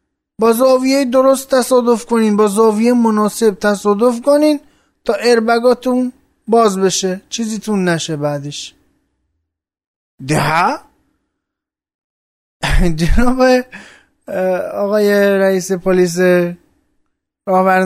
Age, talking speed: 20-39, 75 wpm